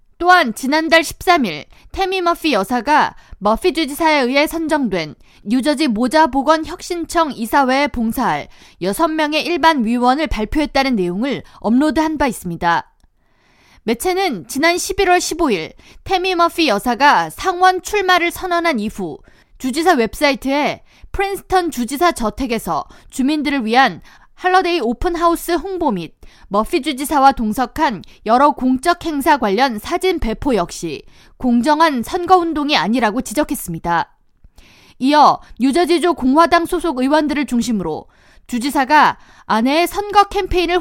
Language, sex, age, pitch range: Korean, female, 20-39, 240-340 Hz